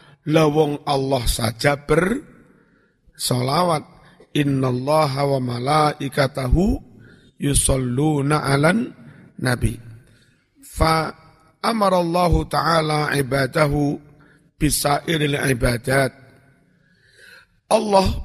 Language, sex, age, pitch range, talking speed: Indonesian, male, 50-69, 135-170 Hz, 60 wpm